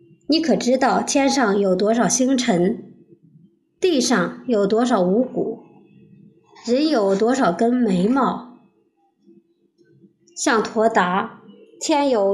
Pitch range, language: 205-260 Hz, Chinese